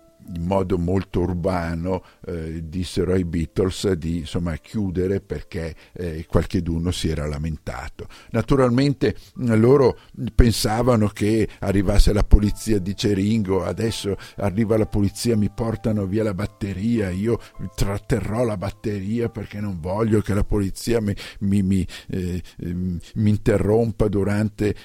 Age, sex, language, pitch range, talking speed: 50-69, male, Italian, 90-110 Hz, 130 wpm